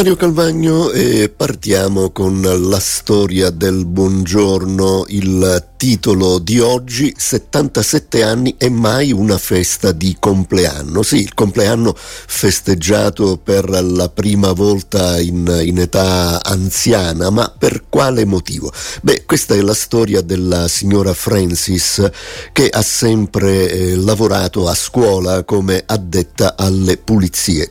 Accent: native